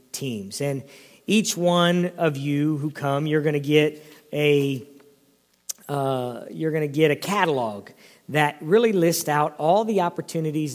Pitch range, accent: 150-175 Hz, American